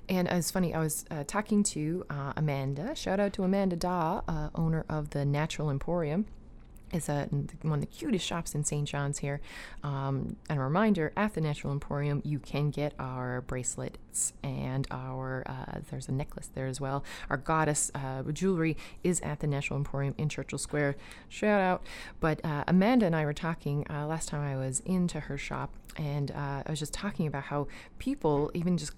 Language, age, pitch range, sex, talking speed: English, 30-49, 145-190 Hz, female, 195 wpm